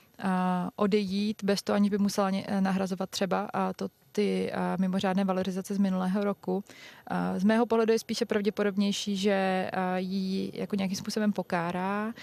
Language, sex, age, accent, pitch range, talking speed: Czech, female, 20-39, native, 195-215 Hz, 145 wpm